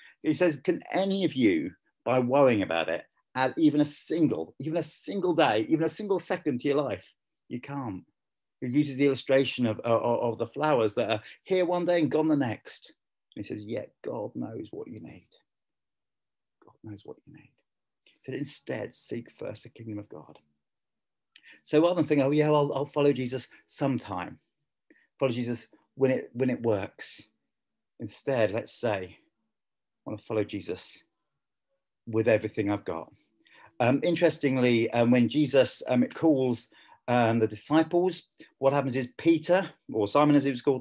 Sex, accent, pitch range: male, British, 120-155 Hz